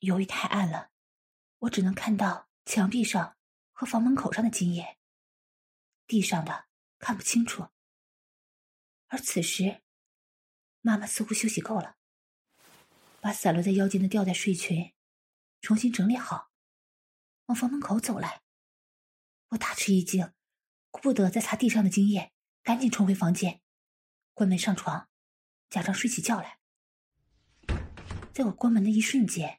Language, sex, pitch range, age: English, female, 185-230 Hz, 20-39